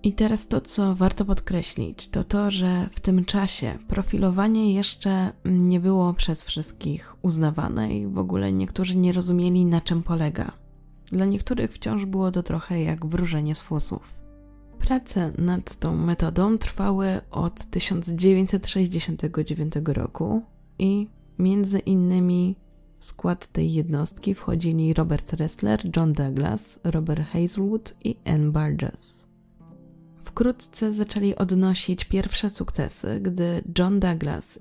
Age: 20-39